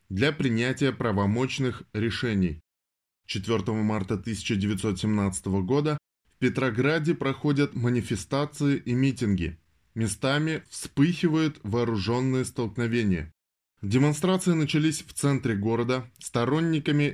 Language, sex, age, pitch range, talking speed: Russian, male, 20-39, 100-140 Hz, 85 wpm